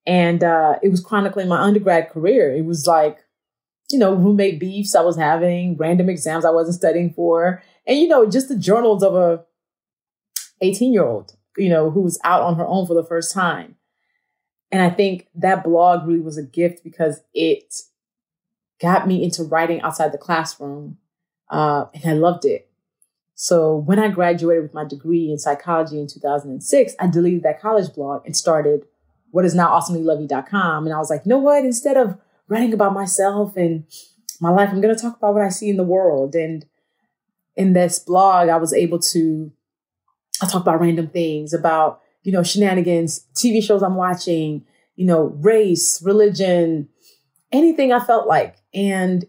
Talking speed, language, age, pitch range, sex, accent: 180 wpm, English, 30-49, 165-200 Hz, female, American